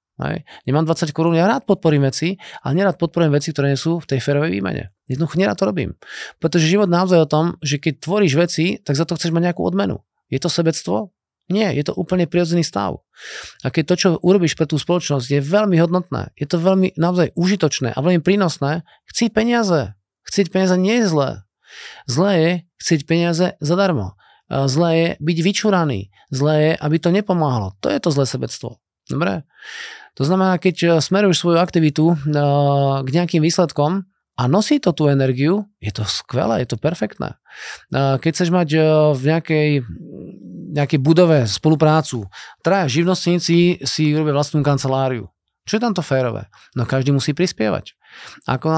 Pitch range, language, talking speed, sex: 140-180 Hz, Slovak, 170 wpm, male